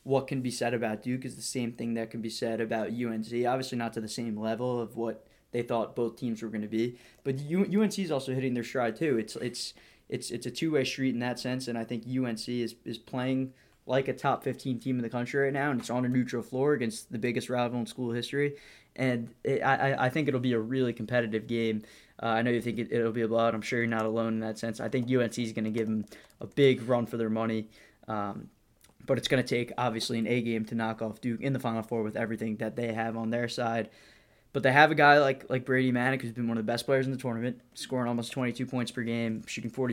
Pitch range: 115-130 Hz